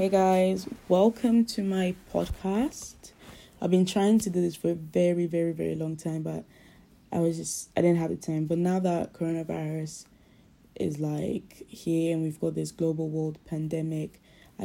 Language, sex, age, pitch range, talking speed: English, female, 20-39, 155-180 Hz, 175 wpm